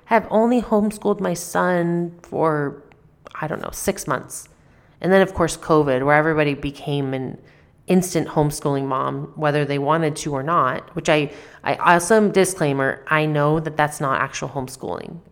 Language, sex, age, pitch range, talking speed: English, female, 30-49, 150-195 Hz, 160 wpm